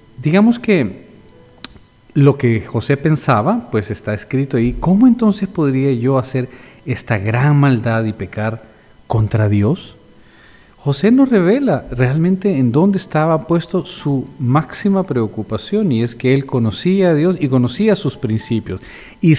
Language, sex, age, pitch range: Spanish, male, 40-59, 110-155 Hz